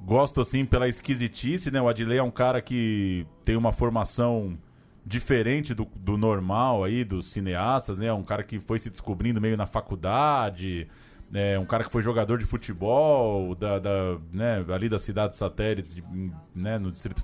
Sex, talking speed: male, 190 wpm